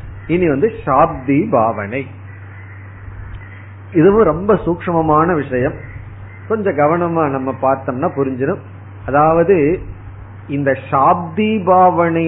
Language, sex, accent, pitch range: Tamil, male, native, 100-165 Hz